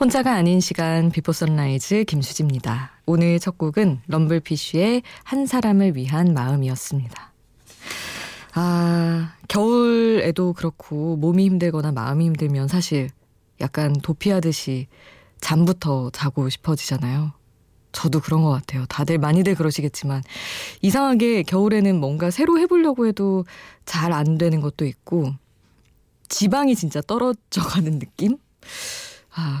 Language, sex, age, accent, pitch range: Korean, female, 20-39, native, 145-195 Hz